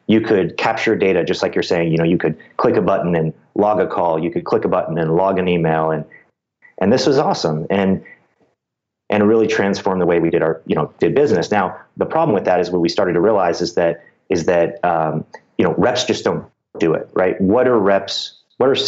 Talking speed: 235 wpm